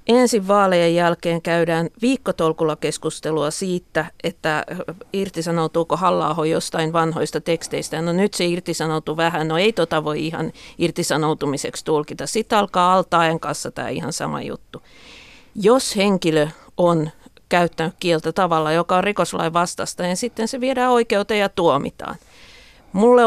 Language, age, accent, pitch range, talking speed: Finnish, 50-69, native, 165-200 Hz, 130 wpm